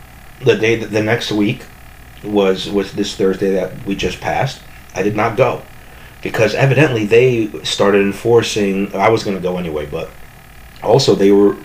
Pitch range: 100-125 Hz